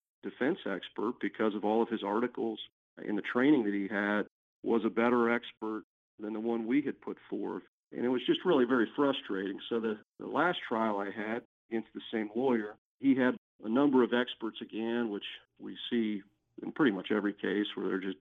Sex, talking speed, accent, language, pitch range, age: male, 200 wpm, American, English, 100-120 Hz, 50-69